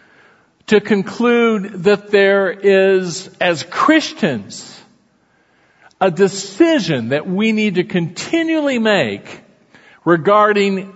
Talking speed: 90 wpm